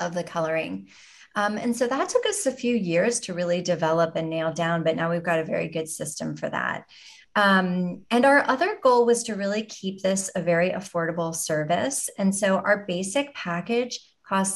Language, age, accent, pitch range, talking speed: English, 30-49, American, 165-210 Hz, 200 wpm